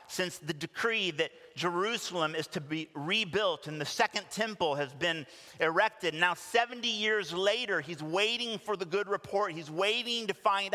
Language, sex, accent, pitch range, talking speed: English, male, American, 145-210 Hz, 165 wpm